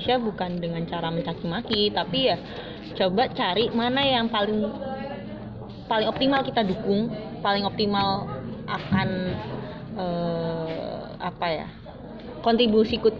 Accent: native